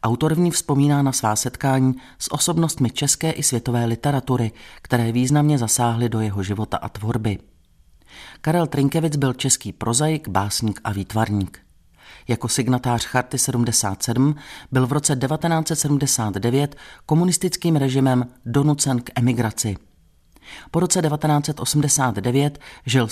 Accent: native